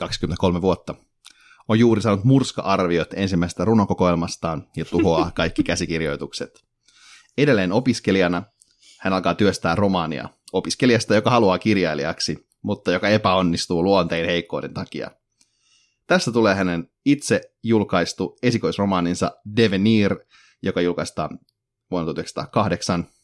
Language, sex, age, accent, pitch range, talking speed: Finnish, male, 30-49, native, 90-110 Hz, 100 wpm